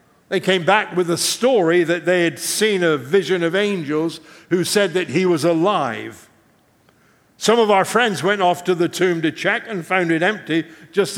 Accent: American